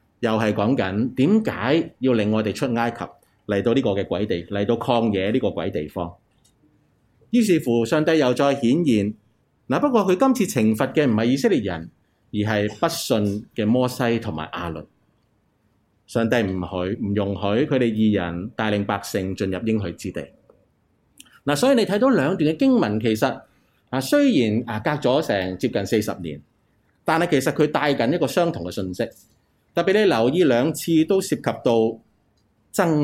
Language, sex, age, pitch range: Chinese, male, 30-49, 100-140 Hz